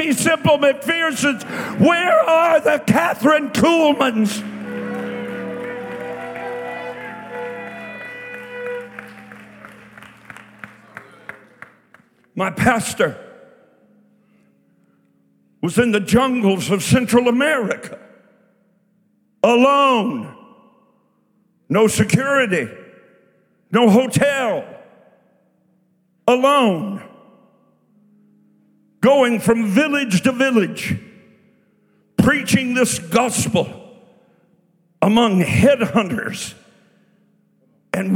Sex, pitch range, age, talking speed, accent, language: male, 180-250 Hz, 60-79, 50 wpm, American, English